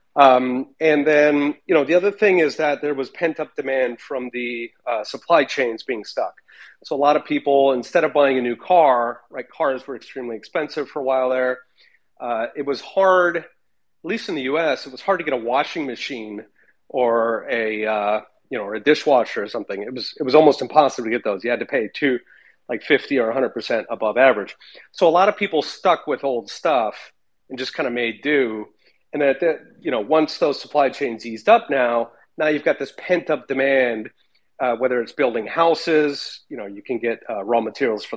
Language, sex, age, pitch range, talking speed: English, male, 30-49, 120-155 Hz, 220 wpm